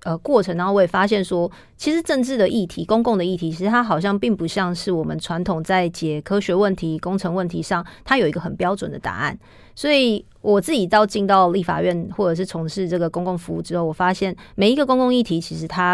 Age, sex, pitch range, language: 30-49, female, 175-210 Hz, Chinese